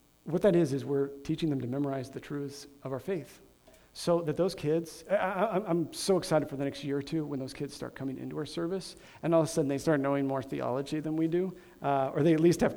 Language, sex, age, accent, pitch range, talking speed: English, male, 40-59, American, 140-180 Hz, 265 wpm